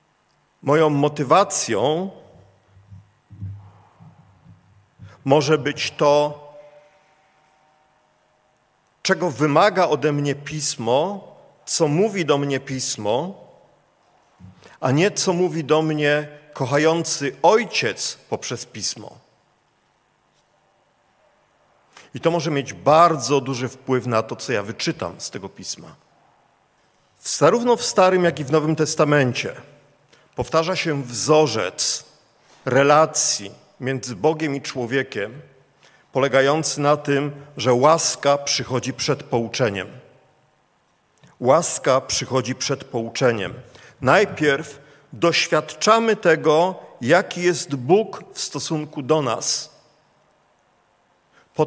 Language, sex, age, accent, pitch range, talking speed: Polish, male, 50-69, native, 130-155 Hz, 90 wpm